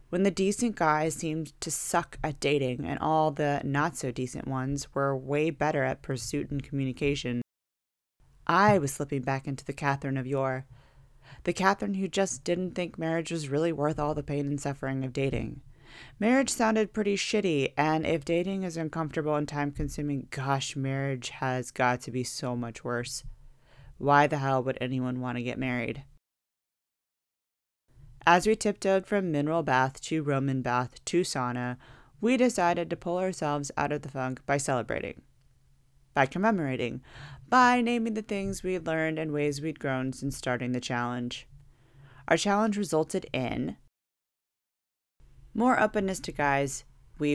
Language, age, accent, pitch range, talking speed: English, 30-49, American, 130-165 Hz, 160 wpm